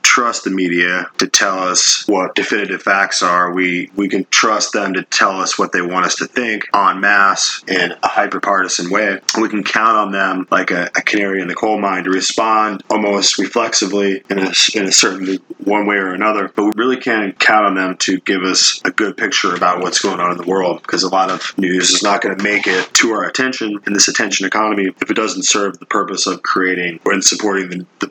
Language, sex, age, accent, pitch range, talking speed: English, male, 20-39, American, 90-100 Hz, 225 wpm